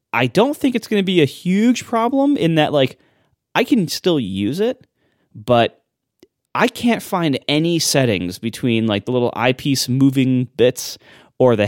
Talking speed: 170 wpm